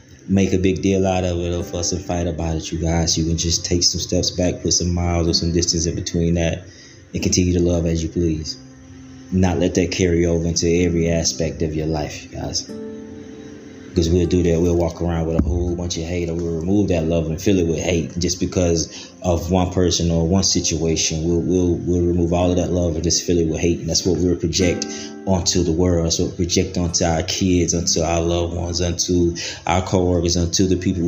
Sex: male